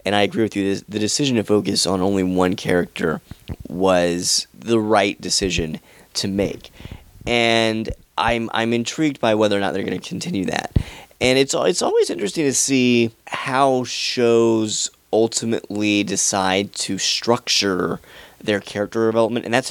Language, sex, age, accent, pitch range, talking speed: English, male, 30-49, American, 100-115 Hz, 150 wpm